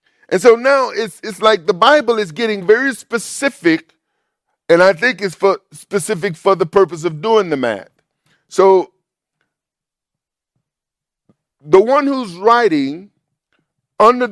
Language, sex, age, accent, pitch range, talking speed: English, male, 50-69, American, 165-225 Hz, 130 wpm